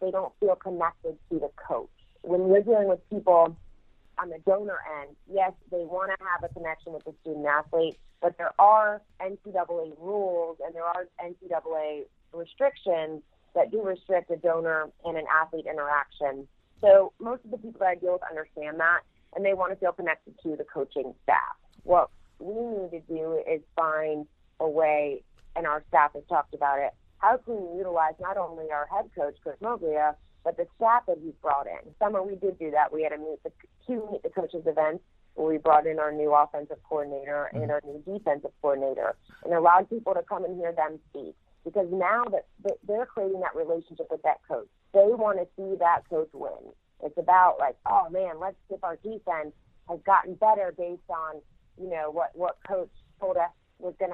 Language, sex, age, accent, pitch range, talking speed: English, female, 30-49, American, 155-195 Hz, 195 wpm